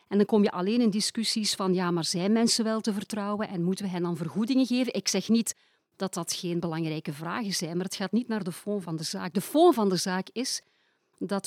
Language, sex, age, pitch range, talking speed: French, female, 40-59, 180-230 Hz, 250 wpm